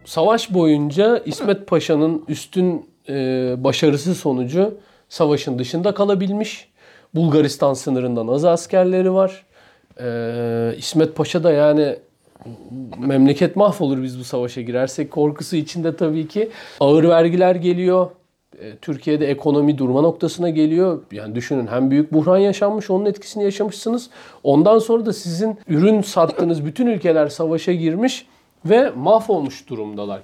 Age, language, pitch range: 40-59, Turkish, 140-185 Hz